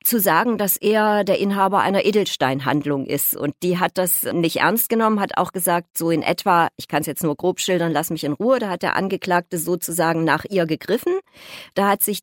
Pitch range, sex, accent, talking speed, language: 170-205 Hz, female, German, 215 wpm, German